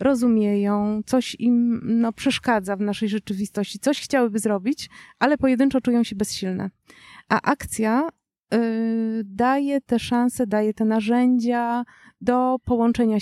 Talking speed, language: 115 wpm, Polish